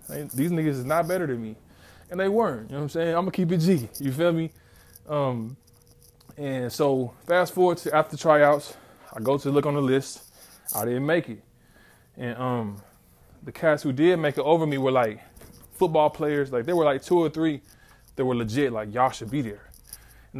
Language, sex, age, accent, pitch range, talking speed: English, male, 20-39, American, 120-150 Hz, 215 wpm